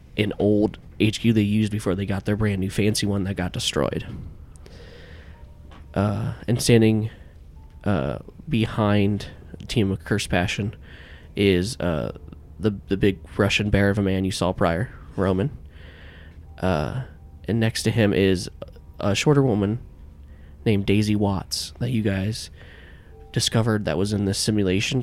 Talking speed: 145 wpm